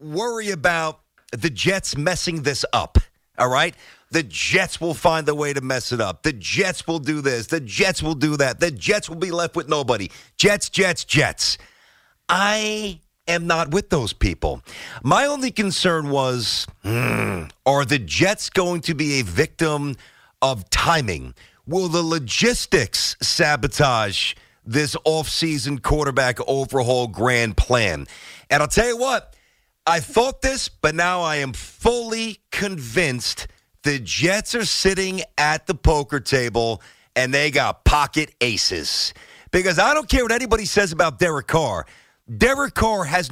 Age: 40-59